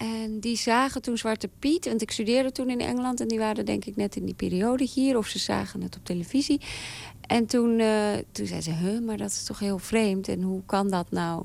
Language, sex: Dutch, female